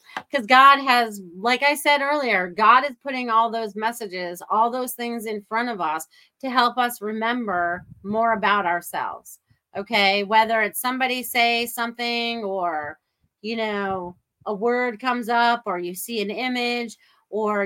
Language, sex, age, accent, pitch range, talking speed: English, female, 30-49, American, 195-245 Hz, 155 wpm